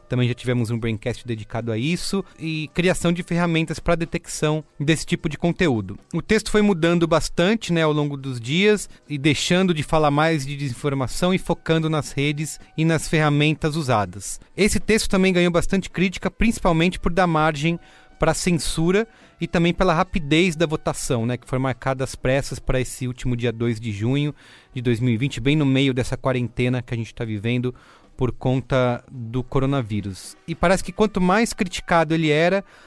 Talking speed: 180 wpm